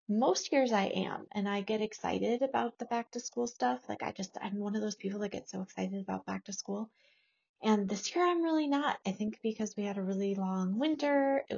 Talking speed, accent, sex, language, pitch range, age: 240 wpm, American, female, English, 180-240 Hz, 30-49